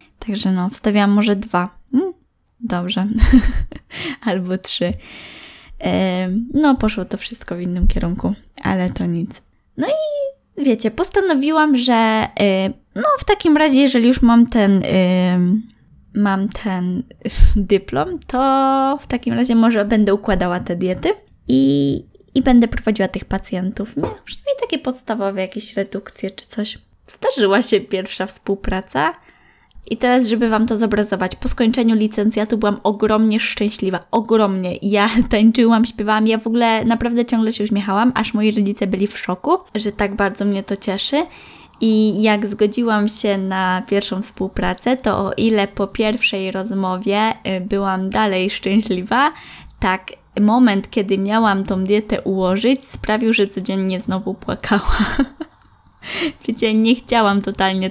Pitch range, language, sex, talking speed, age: 195-235 Hz, Polish, female, 135 wpm, 10-29